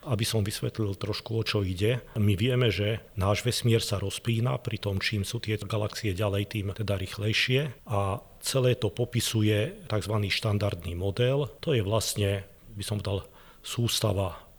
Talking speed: 155 wpm